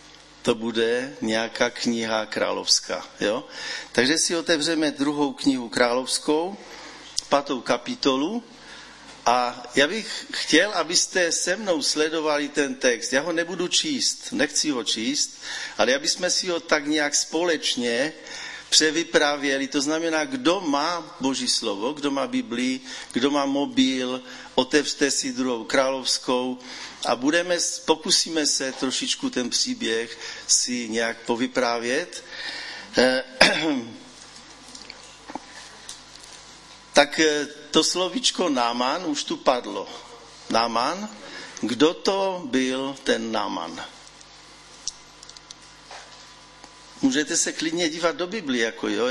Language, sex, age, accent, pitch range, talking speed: Czech, male, 50-69, native, 130-190 Hz, 110 wpm